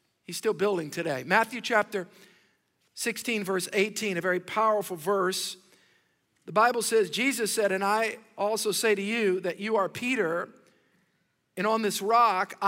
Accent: American